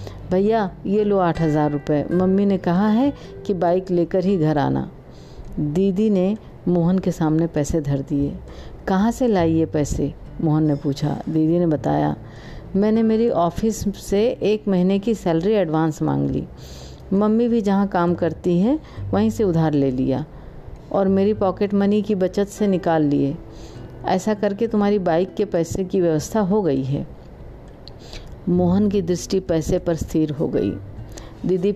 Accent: native